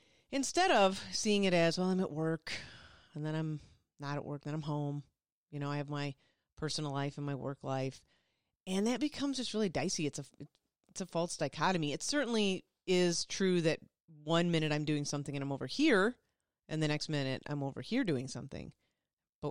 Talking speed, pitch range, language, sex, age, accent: 195 wpm, 140-190 Hz, English, female, 40-59, American